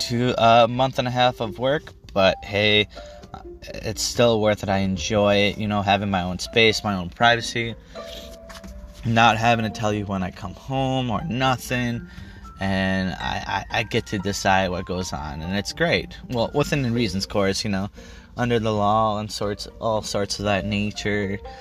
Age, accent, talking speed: 20-39, American, 185 wpm